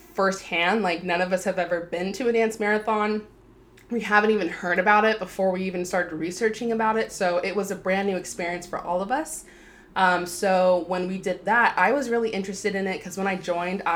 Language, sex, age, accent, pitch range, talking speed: English, female, 20-39, American, 170-195 Hz, 225 wpm